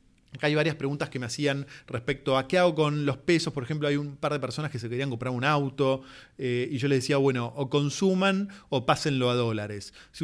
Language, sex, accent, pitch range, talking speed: Spanish, male, Argentinian, 125-155 Hz, 235 wpm